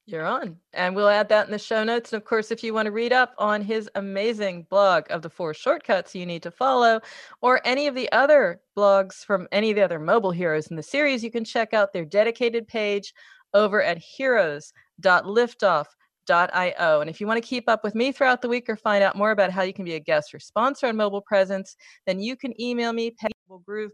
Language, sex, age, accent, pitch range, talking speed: English, female, 40-59, American, 190-235 Hz, 230 wpm